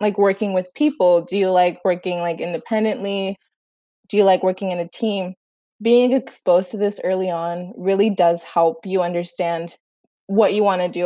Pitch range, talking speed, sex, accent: 180-225 Hz, 180 wpm, female, American